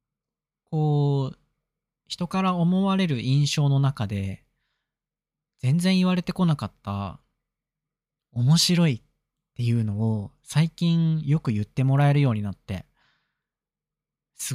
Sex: male